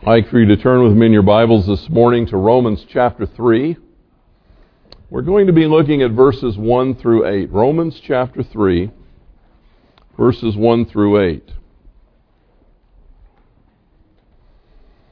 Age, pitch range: 50-69, 95-125 Hz